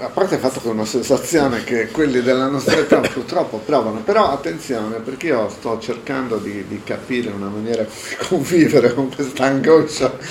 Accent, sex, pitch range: native, male, 115-160 Hz